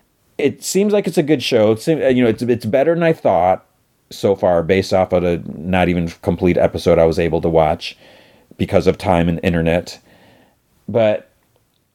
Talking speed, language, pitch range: 190 wpm, English, 90-115 Hz